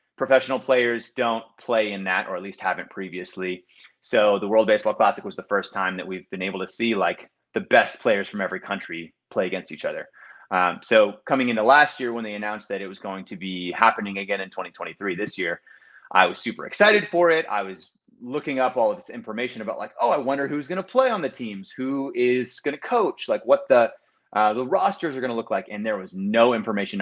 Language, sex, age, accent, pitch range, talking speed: English, male, 30-49, American, 95-125 Hz, 235 wpm